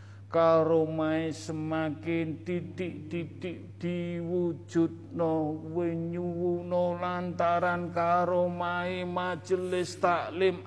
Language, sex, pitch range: Indonesian, male, 120-170 Hz